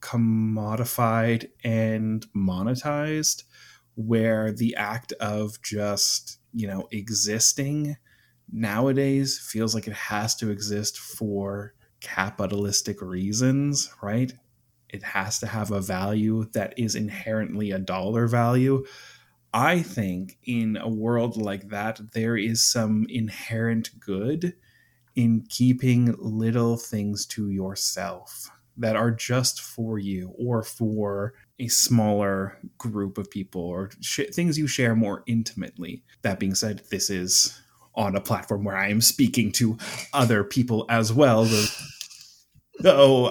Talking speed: 125 wpm